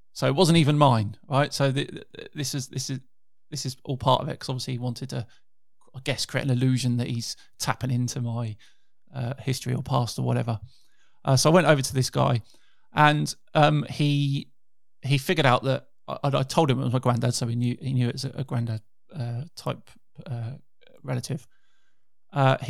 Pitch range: 125-140 Hz